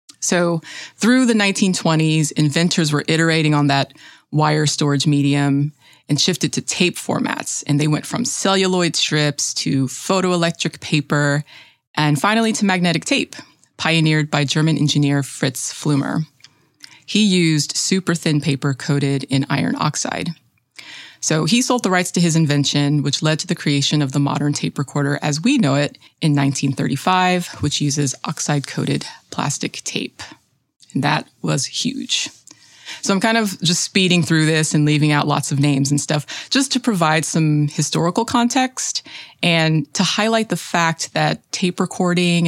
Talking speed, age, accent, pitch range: 155 wpm, 20-39, American, 145-180 Hz